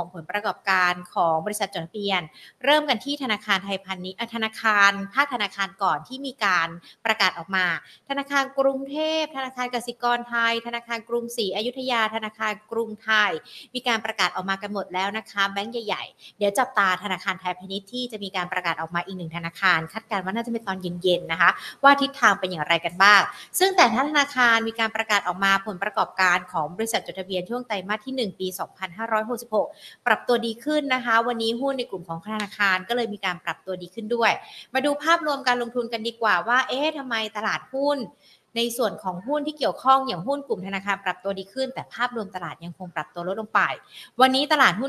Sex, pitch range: female, 195-245 Hz